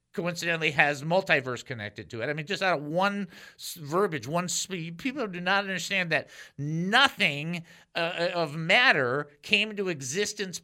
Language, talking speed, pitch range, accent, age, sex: English, 145 wpm, 145-195 Hz, American, 50-69, male